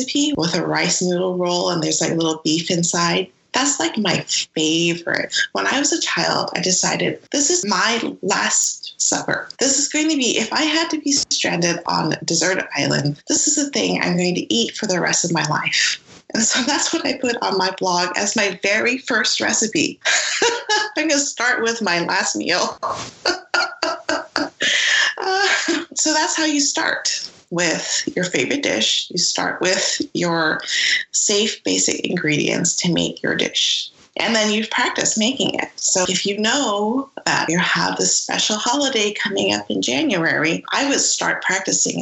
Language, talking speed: English, 175 wpm